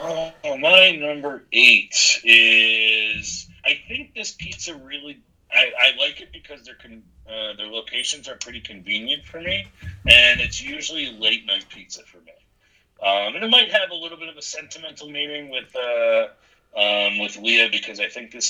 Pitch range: 105-150 Hz